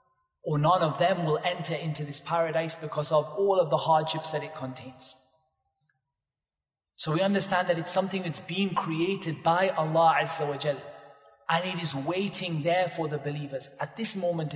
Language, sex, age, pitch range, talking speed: English, male, 30-49, 145-180 Hz, 175 wpm